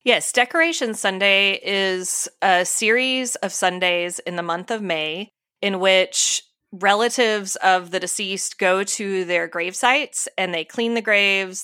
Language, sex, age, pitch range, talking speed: English, female, 20-39, 175-205 Hz, 150 wpm